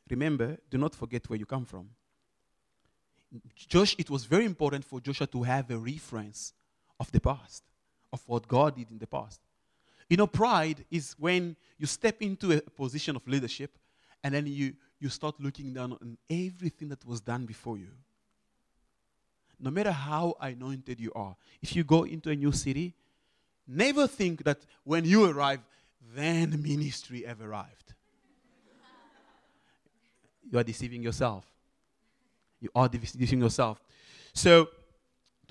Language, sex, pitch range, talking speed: English, male, 130-185 Hz, 150 wpm